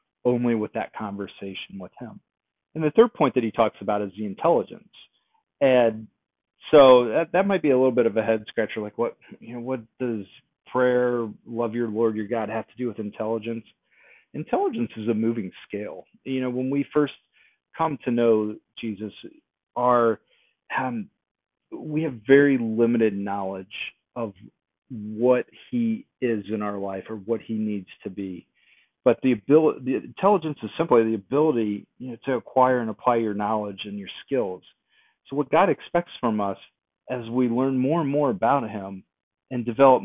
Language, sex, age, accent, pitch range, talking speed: English, male, 40-59, American, 110-135 Hz, 175 wpm